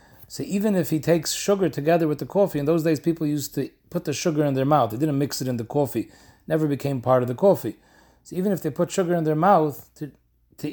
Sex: male